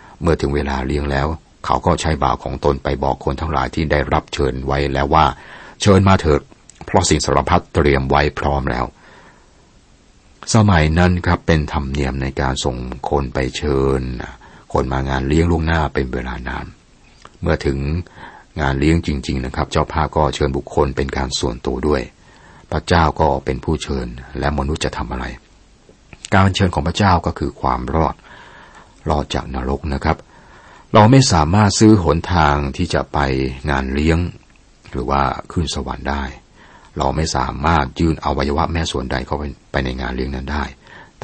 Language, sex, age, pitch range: Thai, male, 60-79, 65-80 Hz